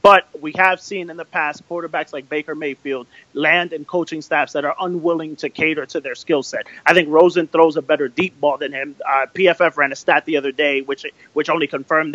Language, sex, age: English, male, 30-49